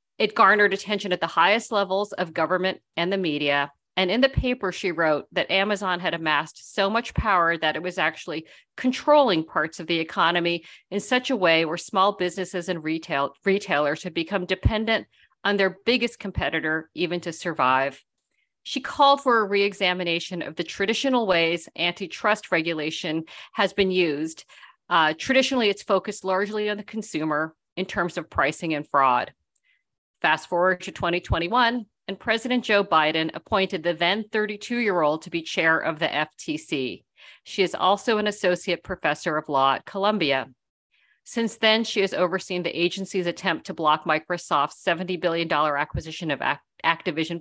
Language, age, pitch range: English, 50-69, 160-210 Hz